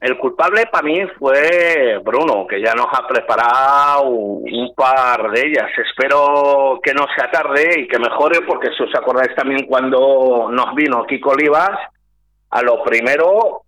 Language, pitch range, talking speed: Spanish, 130-190 Hz, 160 wpm